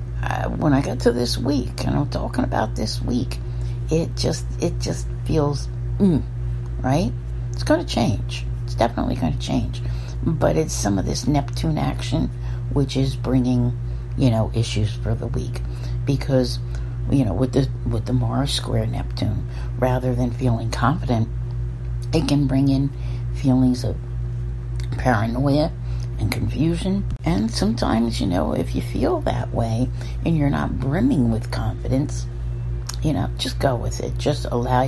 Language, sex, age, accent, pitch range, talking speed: English, female, 60-79, American, 115-125 Hz, 155 wpm